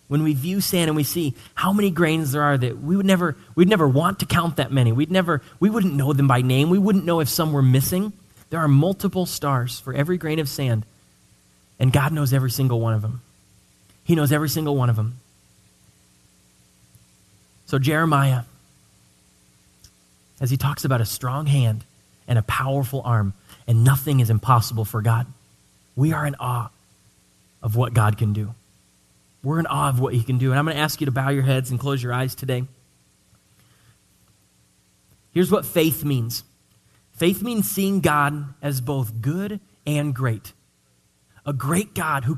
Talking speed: 185 wpm